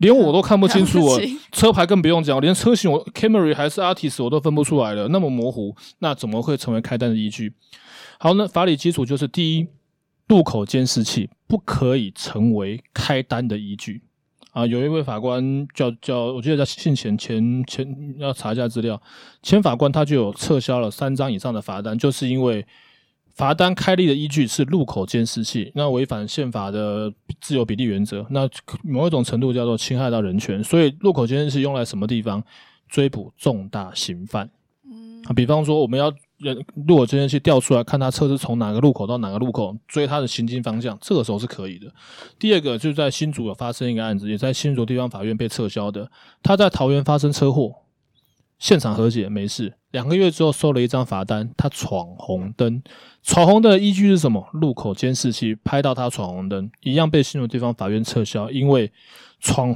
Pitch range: 115-150 Hz